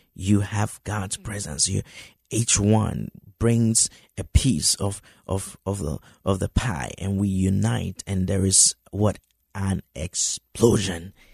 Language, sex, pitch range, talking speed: English, male, 95-115 Hz, 140 wpm